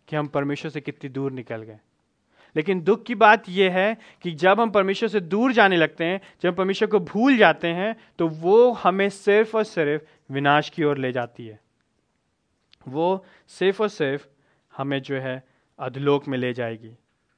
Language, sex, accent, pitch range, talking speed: Hindi, male, native, 155-215 Hz, 185 wpm